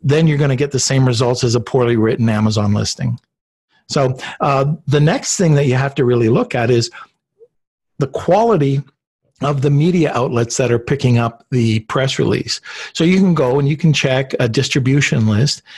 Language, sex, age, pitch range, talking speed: English, male, 50-69, 125-150 Hz, 190 wpm